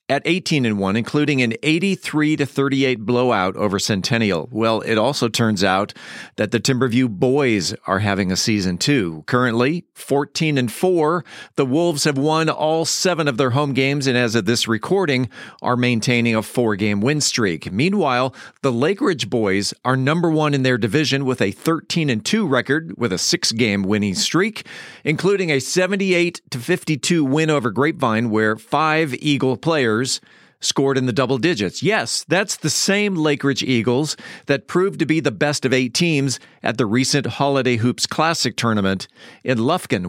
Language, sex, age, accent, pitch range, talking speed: English, male, 40-59, American, 115-155 Hz, 165 wpm